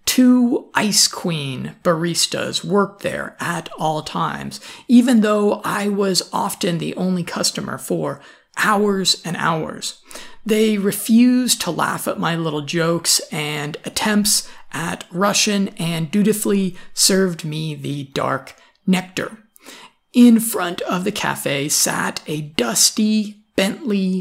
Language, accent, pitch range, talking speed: English, American, 175-225 Hz, 120 wpm